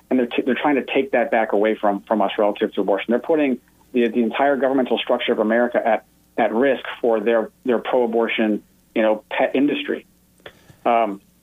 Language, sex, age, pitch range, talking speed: English, male, 40-59, 115-155 Hz, 195 wpm